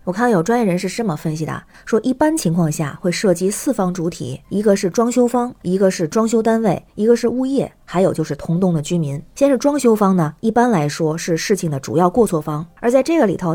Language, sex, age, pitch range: Chinese, female, 20-39, 175-230 Hz